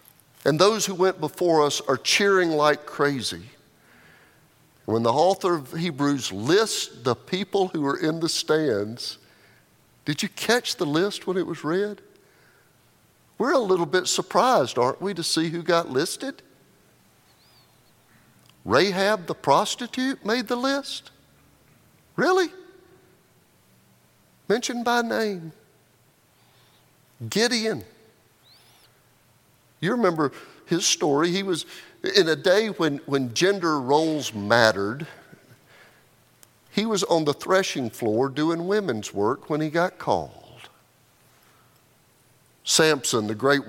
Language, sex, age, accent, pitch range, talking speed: English, male, 50-69, American, 125-185 Hz, 115 wpm